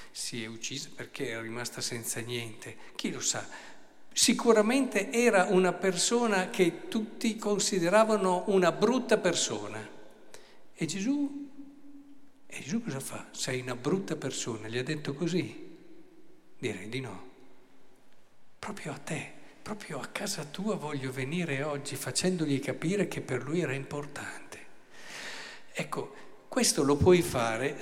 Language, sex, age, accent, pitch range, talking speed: Italian, male, 50-69, native, 135-190 Hz, 130 wpm